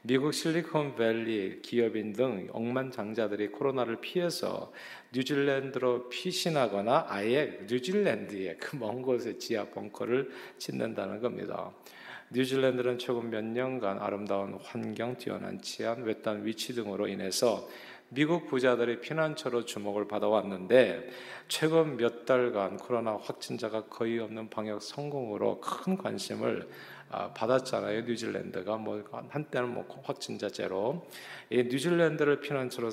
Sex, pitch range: male, 110-130 Hz